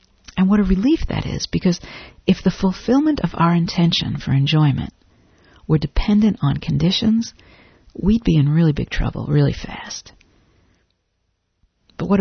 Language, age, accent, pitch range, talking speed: English, 50-69, American, 145-190 Hz, 145 wpm